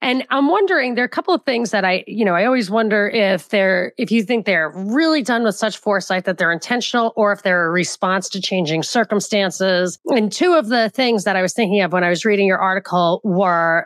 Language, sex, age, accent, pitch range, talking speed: English, female, 30-49, American, 185-230 Hz, 240 wpm